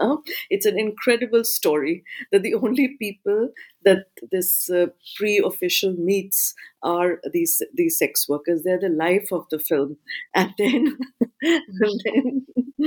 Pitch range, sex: 185-265 Hz, female